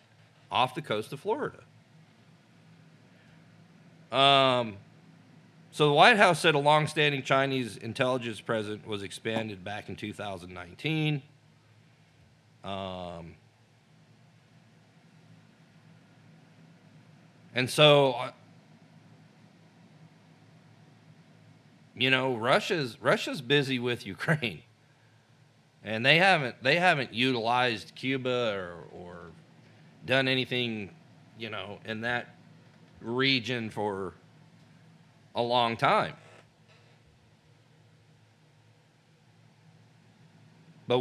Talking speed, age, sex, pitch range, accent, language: 80 wpm, 40-59, male, 115-155 Hz, American, English